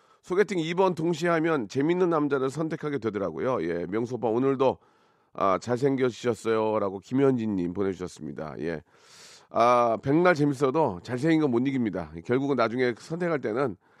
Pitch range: 110-150 Hz